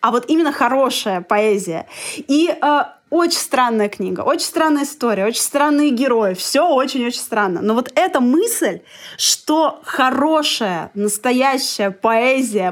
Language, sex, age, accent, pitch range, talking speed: Russian, female, 20-39, native, 245-315 Hz, 130 wpm